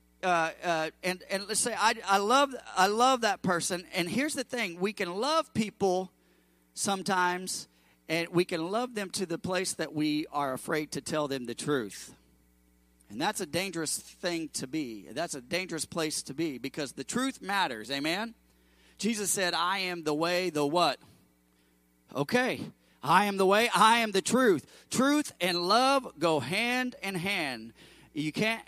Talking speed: 175 wpm